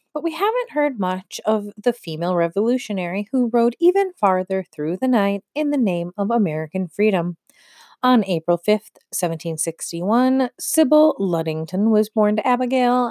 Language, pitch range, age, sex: English, 175-235 Hz, 30-49, female